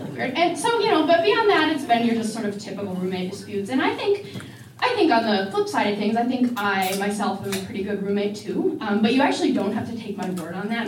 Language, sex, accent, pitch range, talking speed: English, female, American, 195-255 Hz, 270 wpm